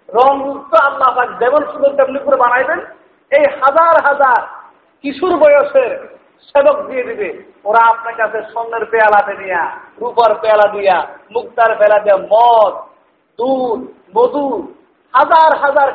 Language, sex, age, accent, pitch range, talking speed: Bengali, male, 50-69, native, 245-330 Hz, 120 wpm